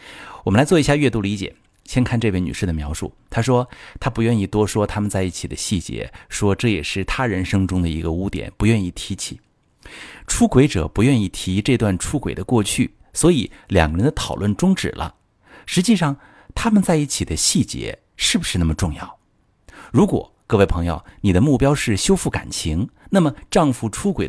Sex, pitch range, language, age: male, 90-130 Hz, Chinese, 50-69